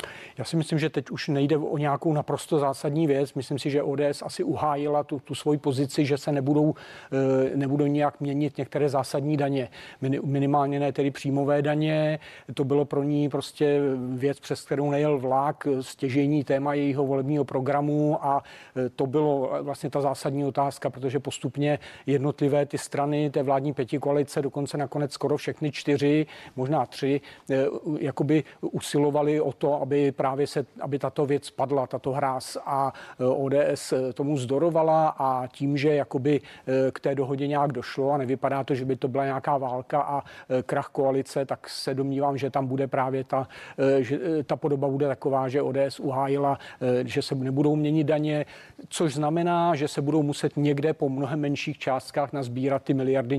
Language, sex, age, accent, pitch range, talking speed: Czech, male, 40-59, native, 135-150 Hz, 165 wpm